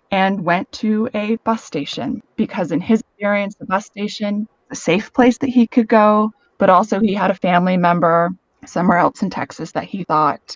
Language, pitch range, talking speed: English, 175-225 Hz, 195 wpm